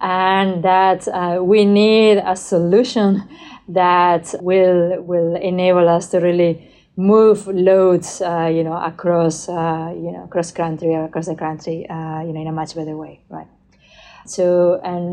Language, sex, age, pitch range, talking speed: English, female, 30-49, 175-205 Hz, 160 wpm